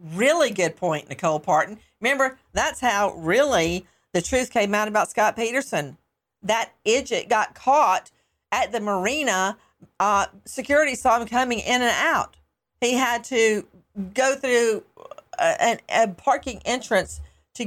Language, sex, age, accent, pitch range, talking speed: English, female, 50-69, American, 180-245 Hz, 145 wpm